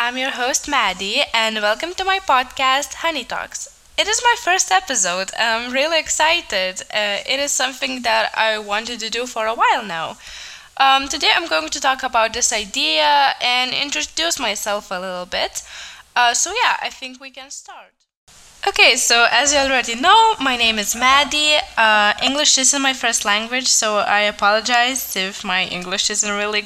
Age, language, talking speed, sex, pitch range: 10-29, English, 180 wpm, female, 220-290 Hz